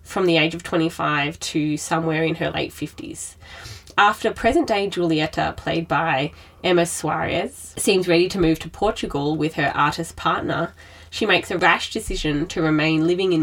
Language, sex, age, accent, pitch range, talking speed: English, female, 20-39, Australian, 150-180 Hz, 165 wpm